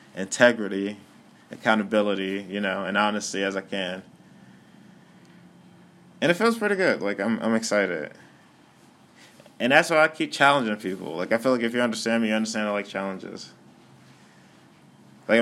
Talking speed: 150 wpm